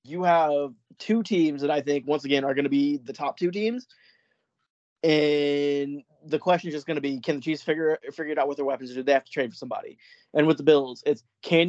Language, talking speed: English, 245 wpm